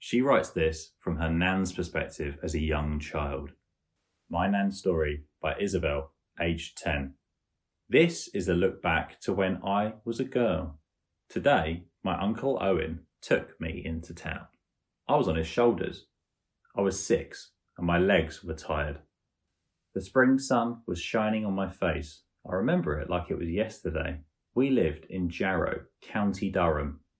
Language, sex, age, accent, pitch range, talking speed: English, male, 30-49, British, 80-95 Hz, 155 wpm